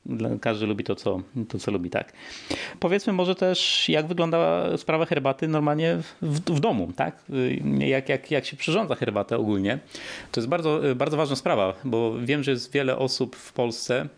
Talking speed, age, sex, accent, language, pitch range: 175 wpm, 30-49, male, native, Polish, 110-145 Hz